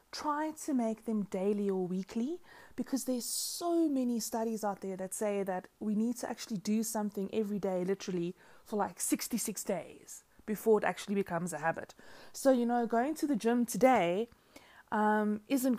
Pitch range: 185-225 Hz